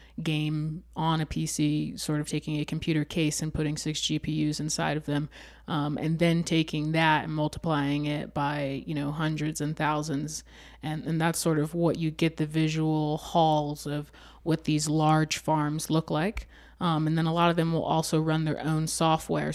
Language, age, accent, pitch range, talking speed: English, 20-39, American, 150-165 Hz, 190 wpm